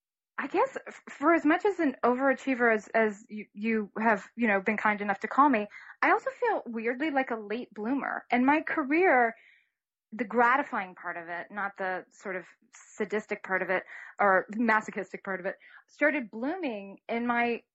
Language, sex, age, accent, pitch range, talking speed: English, female, 20-39, American, 215-265 Hz, 185 wpm